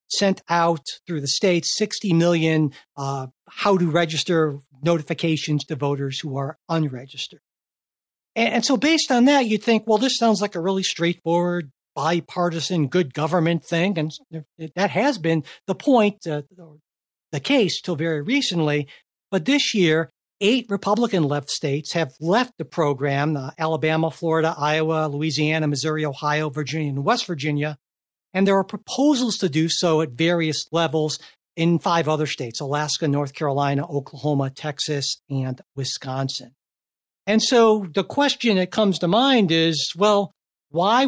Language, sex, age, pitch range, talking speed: English, male, 60-79, 155-210 Hz, 145 wpm